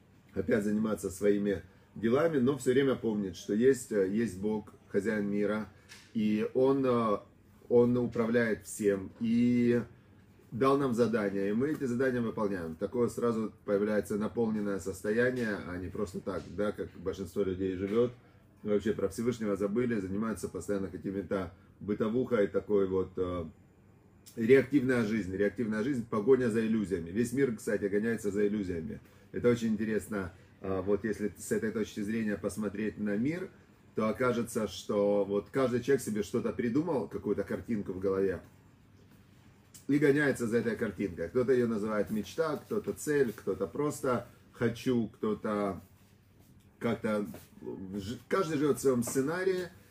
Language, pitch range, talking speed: Russian, 100-120 Hz, 135 wpm